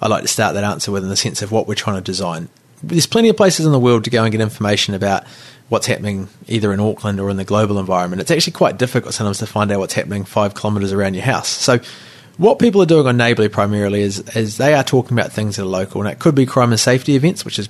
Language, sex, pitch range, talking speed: English, male, 105-135 Hz, 280 wpm